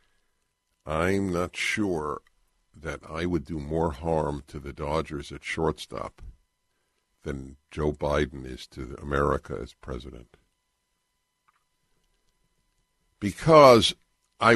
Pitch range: 75-110 Hz